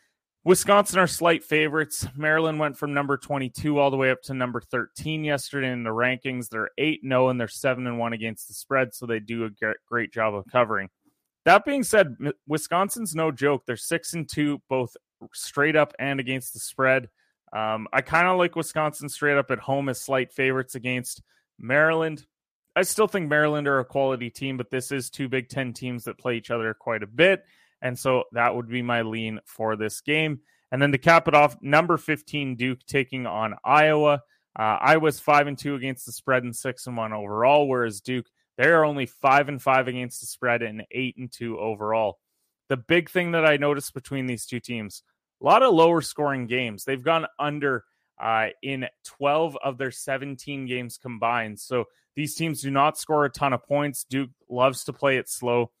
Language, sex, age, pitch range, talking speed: English, male, 30-49, 120-150 Hz, 200 wpm